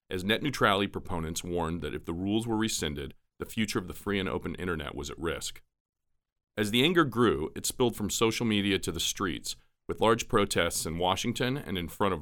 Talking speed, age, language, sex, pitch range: 210 wpm, 40-59, English, male, 85-110 Hz